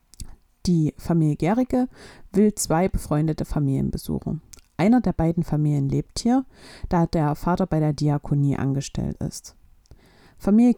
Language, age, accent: German, 50-69, German